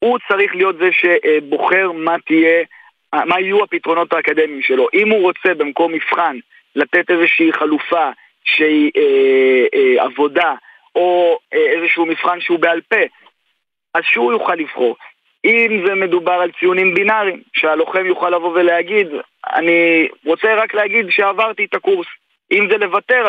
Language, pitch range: Hebrew, 160-220 Hz